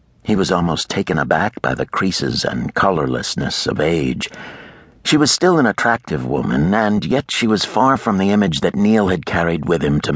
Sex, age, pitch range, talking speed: male, 60-79, 85-110 Hz, 195 wpm